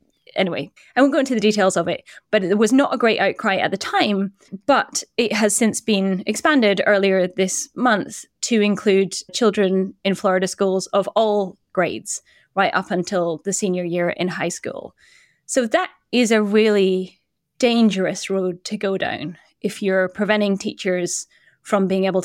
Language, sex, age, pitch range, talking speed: English, female, 10-29, 185-230 Hz, 170 wpm